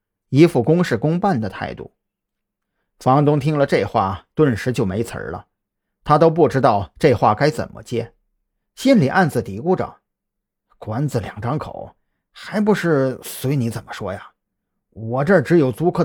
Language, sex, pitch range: Chinese, male, 115-170 Hz